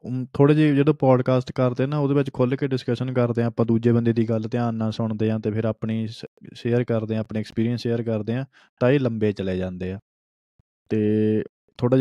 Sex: male